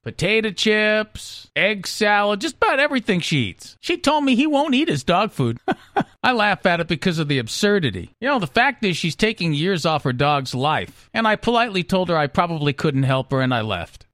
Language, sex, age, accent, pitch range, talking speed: English, male, 50-69, American, 150-215 Hz, 215 wpm